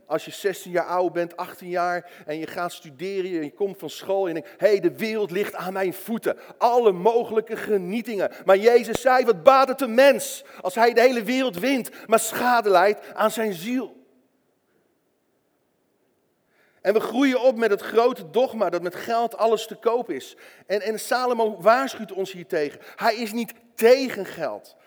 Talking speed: 185 wpm